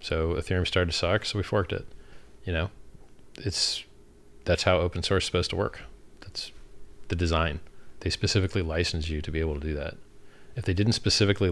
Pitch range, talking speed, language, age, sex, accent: 80-100 Hz, 195 wpm, English, 30-49, male, American